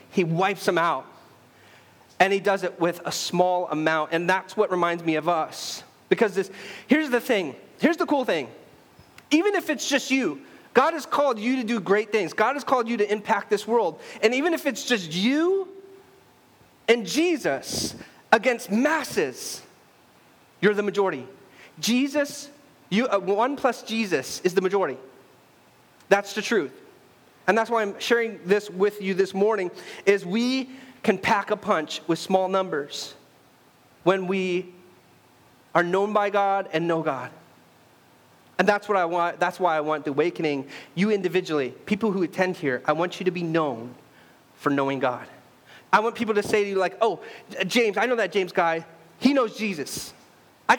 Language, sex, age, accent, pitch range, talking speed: English, male, 30-49, American, 175-240 Hz, 170 wpm